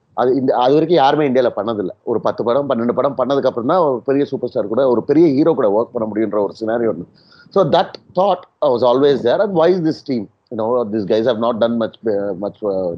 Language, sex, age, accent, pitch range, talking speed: Tamil, male, 30-49, native, 120-180 Hz, 205 wpm